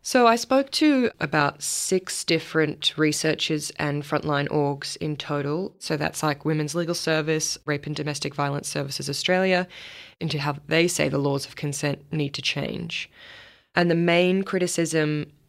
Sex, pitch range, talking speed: female, 145-175 Hz, 155 wpm